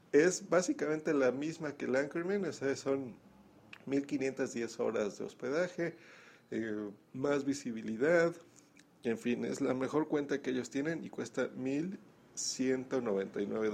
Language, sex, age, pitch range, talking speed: Spanish, male, 50-69, 100-140 Hz, 120 wpm